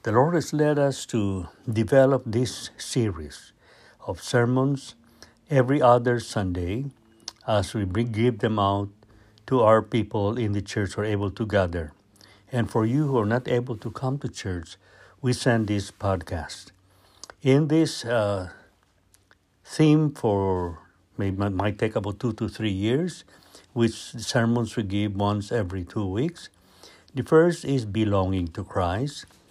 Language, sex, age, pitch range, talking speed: English, male, 60-79, 100-130 Hz, 145 wpm